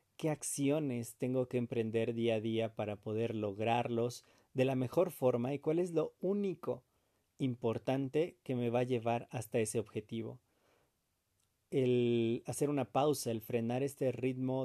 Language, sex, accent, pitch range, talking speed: Spanish, male, Mexican, 115-140 Hz, 150 wpm